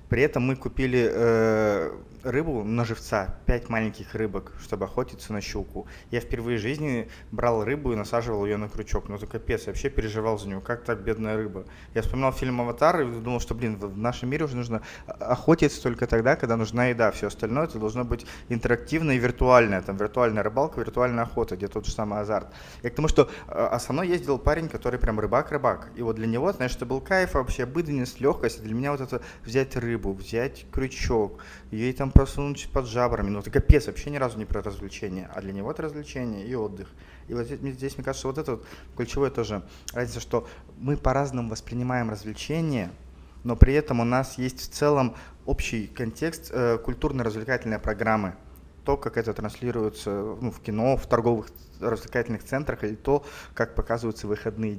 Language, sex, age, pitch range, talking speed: Russian, male, 20-39, 105-130 Hz, 190 wpm